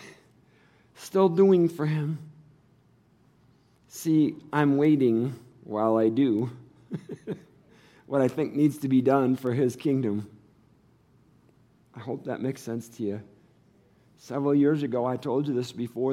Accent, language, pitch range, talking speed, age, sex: American, English, 115-150 Hz, 130 wpm, 50-69, male